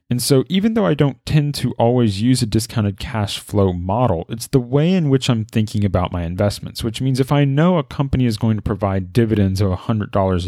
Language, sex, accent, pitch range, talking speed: English, male, American, 100-140 Hz, 225 wpm